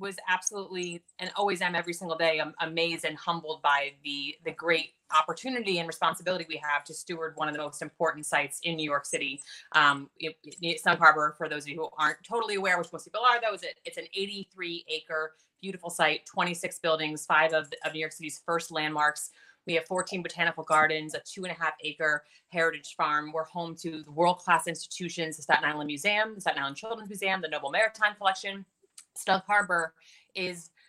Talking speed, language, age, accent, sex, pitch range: 195 wpm, English, 30-49, American, female, 155-195 Hz